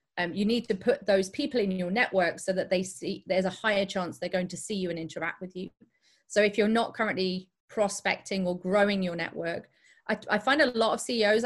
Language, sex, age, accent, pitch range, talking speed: English, female, 30-49, British, 190-230 Hz, 230 wpm